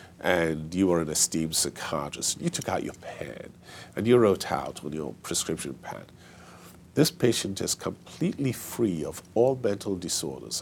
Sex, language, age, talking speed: male, English, 50-69, 160 wpm